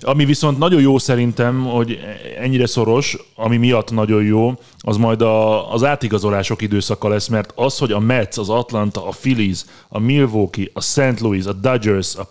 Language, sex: Hungarian, male